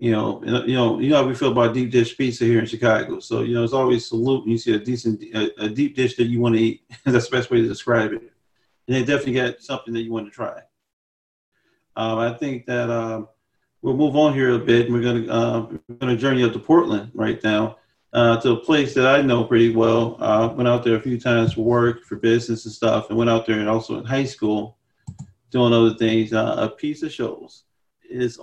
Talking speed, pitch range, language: 245 wpm, 115-135 Hz, English